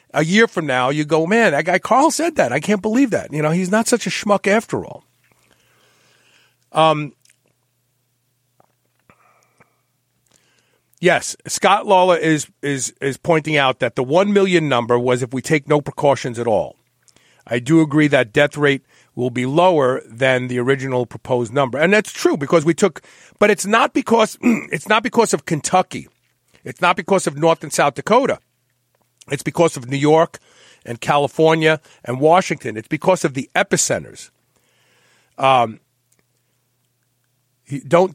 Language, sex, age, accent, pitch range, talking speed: English, male, 50-69, American, 125-185 Hz, 155 wpm